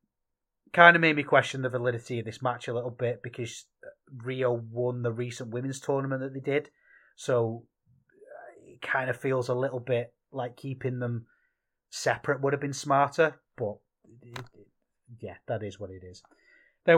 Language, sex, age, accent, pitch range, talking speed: English, male, 30-49, British, 110-130 Hz, 165 wpm